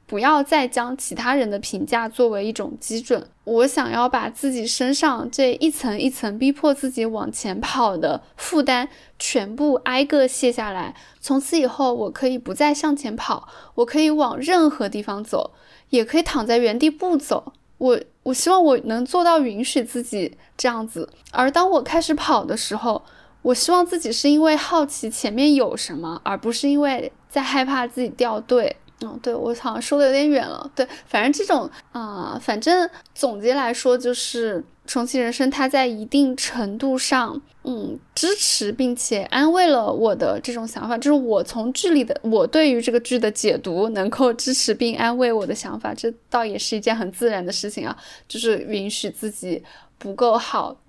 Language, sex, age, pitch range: Chinese, female, 10-29, 230-285 Hz